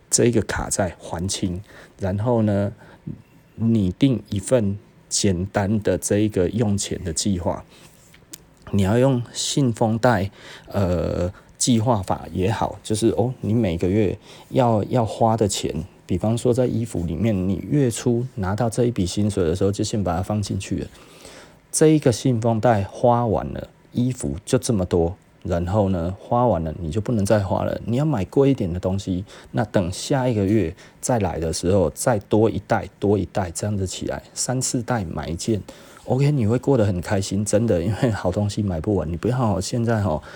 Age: 30-49